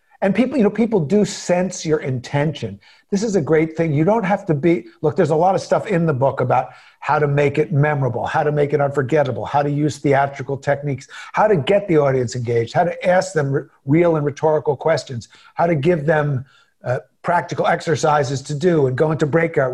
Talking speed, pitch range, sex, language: 215 wpm, 140-180 Hz, male, English